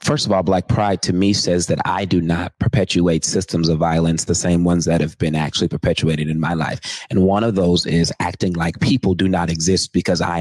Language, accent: English, American